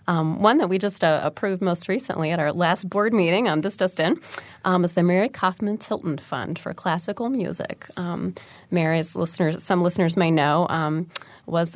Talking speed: 190 wpm